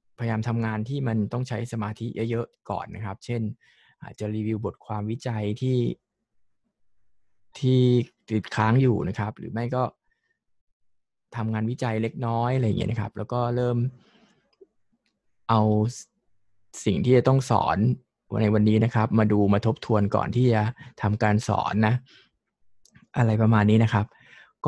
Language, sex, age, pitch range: Thai, male, 20-39, 105-125 Hz